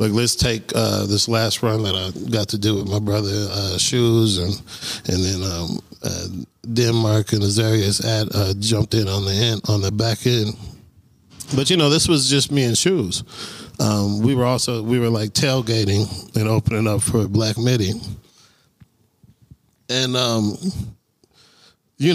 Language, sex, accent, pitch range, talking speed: English, male, American, 110-130 Hz, 170 wpm